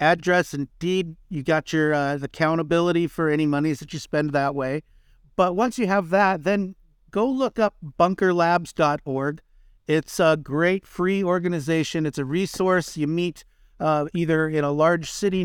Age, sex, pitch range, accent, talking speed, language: 50-69, male, 150-180 Hz, American, 160 wpm, English